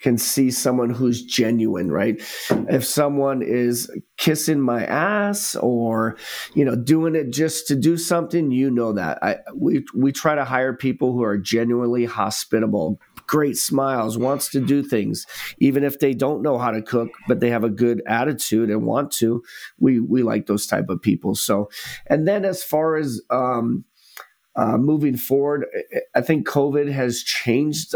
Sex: male